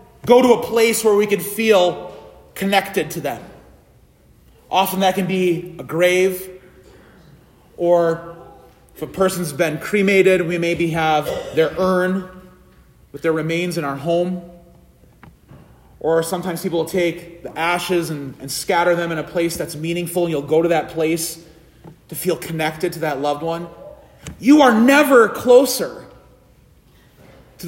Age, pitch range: 30-49, 175-285 Hz